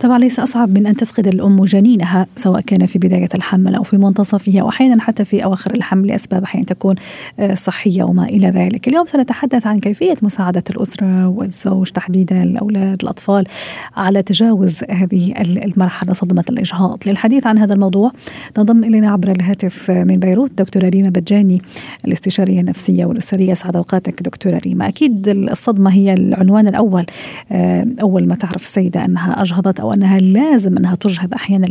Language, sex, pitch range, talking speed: Arabic, female, 185-225 Hz, 150 wpm